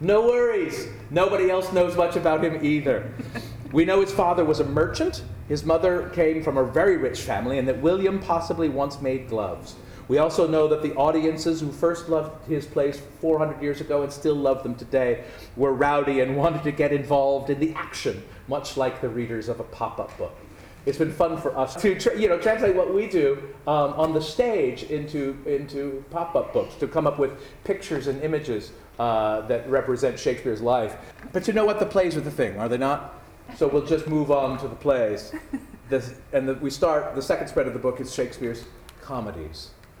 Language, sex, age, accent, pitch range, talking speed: English, male, 40-59, American, 130-170 Hz, 200 wpm